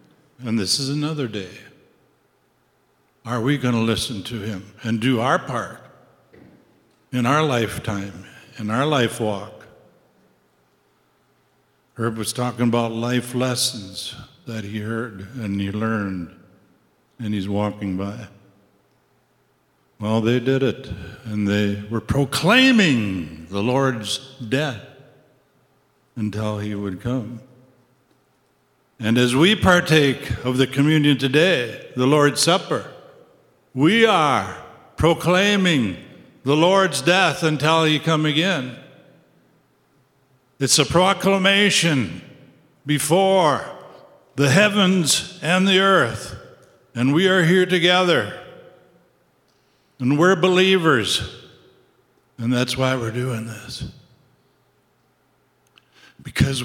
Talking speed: 105 wpm